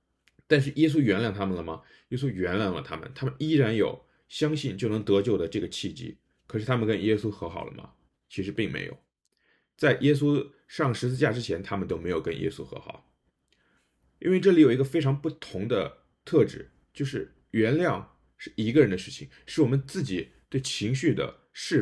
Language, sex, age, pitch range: Chinese, male, 20-39, 100-155 Hz